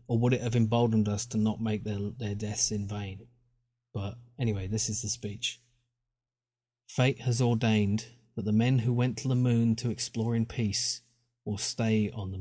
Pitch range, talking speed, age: 110-120 Hz, 190 wpm, 30-49